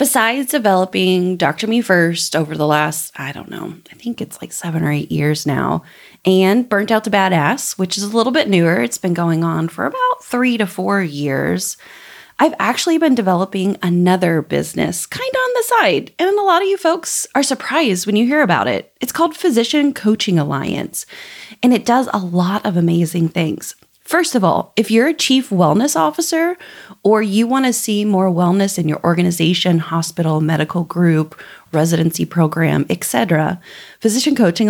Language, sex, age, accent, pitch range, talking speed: English, female, 30-49, American, 170-230 Hz, 185 wpm